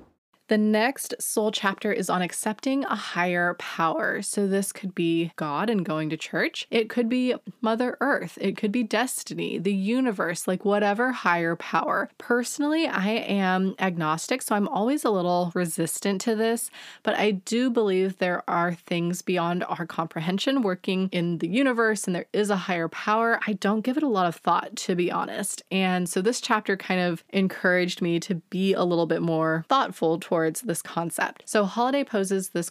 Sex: female